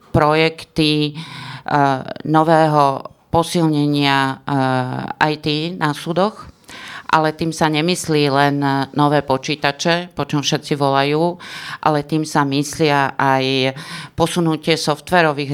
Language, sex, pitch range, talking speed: Slovak, female, 135-165 Hz, 100 wpm